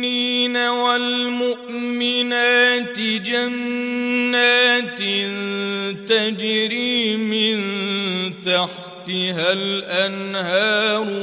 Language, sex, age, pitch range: Arabic, male, 40-59, 195-245 Hz